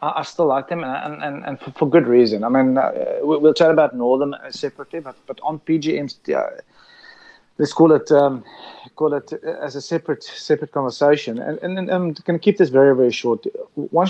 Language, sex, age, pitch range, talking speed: English, male, 30-49, 135-165 Hz, 195 wpm